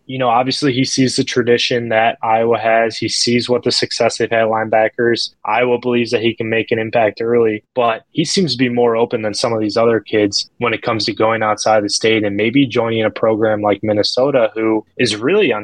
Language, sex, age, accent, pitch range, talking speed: English, male, 20-39, American, 105-120 Hz, 225 wpm